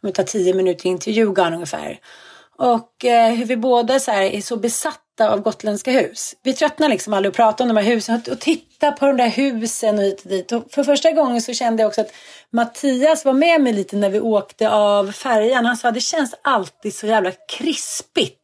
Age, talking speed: 30-49, 215 wpm